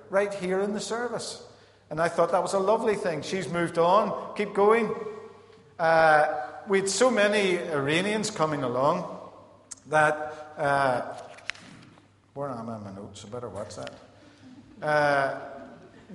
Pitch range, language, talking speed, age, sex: 155-210 Hz, English, 140 wpm, 50-69, male